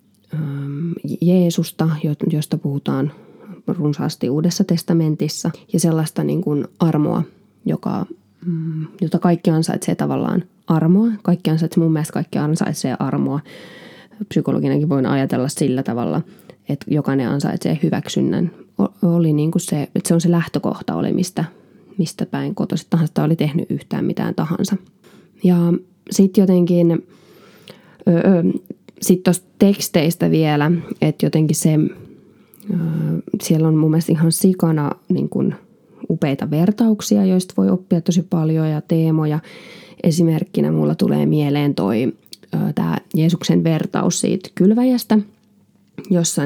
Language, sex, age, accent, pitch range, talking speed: Finnish, female, 20-39, native, 155-185 Hz, 115 wpm